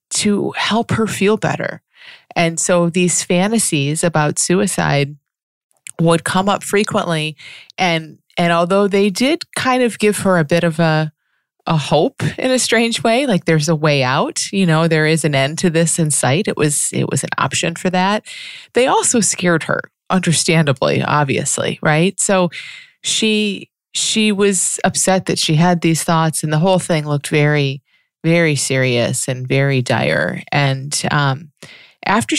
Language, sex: English, female